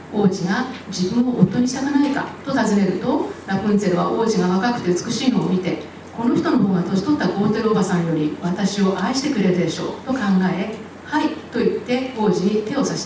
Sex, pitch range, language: female, 185-235 Hz, Japanese